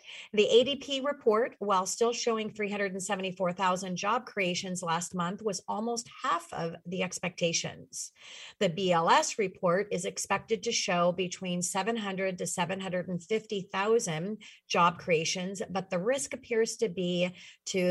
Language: English